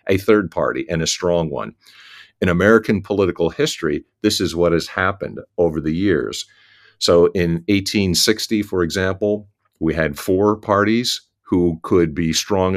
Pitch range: 80-100 Hz